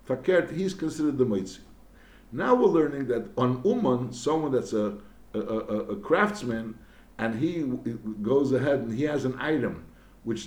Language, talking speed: English, 155 wpm